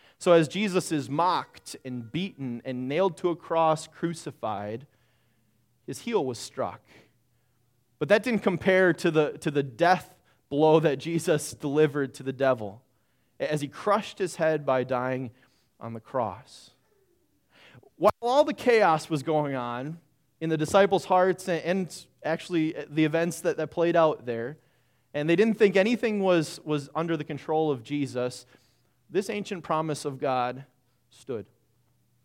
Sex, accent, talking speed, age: male, American, 155 wpm, 30-49